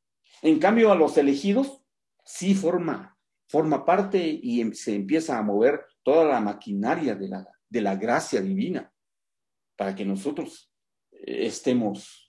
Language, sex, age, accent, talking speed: Spanish, male, 50-69, Mexican, 130 wpm